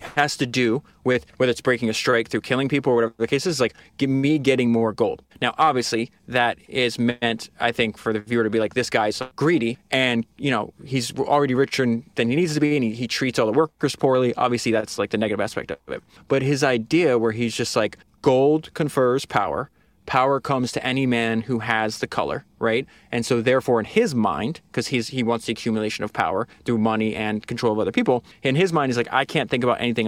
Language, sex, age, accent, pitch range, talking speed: English, male, 20-39, American, 115-135 Hz, 235 wpm